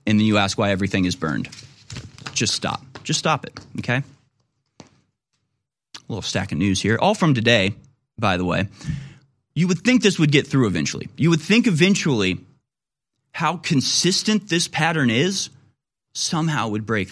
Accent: American